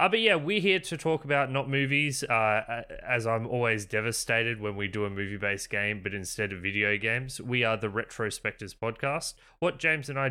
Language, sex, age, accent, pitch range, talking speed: English, male, 20-39, Australian, 100-130 Hz, 205 wpm